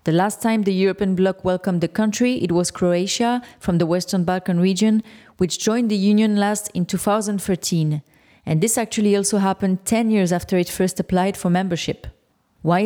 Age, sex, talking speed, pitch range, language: 30-49, female, 175 wpm, 180-220 Hz, English